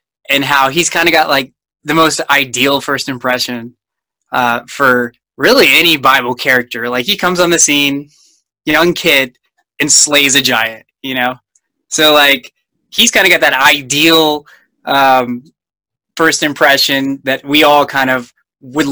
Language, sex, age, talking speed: English, male, 20-39, 155 wpm